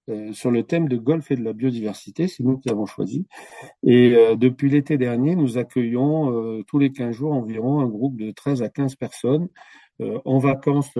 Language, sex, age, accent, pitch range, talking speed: French, male, 50-69, French, 115-140 Hz, 205 wpm